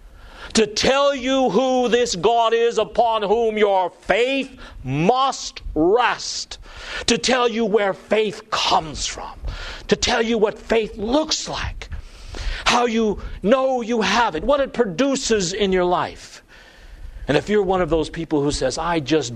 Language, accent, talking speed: English, American, 155 wpm